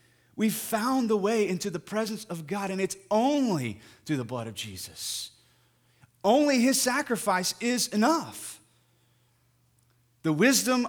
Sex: male